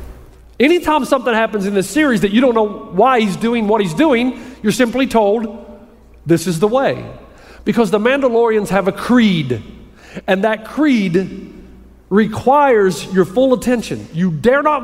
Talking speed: 160 wpm